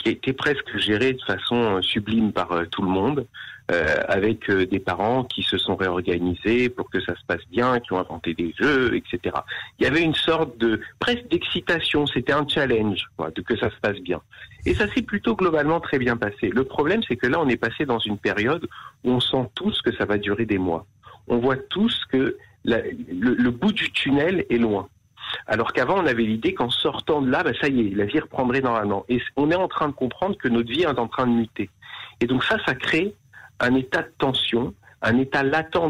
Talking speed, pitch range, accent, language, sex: 225 wpm, 110-155 Hz, French, French, male